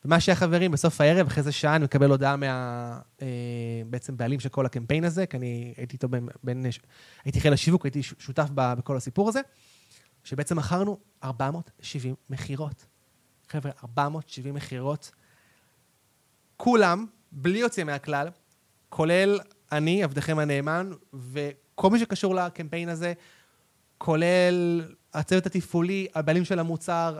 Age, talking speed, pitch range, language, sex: 20-39, 130 wpm, 135-170 Hz, Hebrew, male